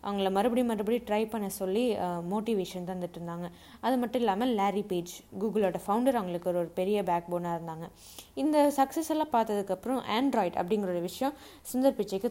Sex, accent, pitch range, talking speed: female, native, 180-240 Hz, 150 wpm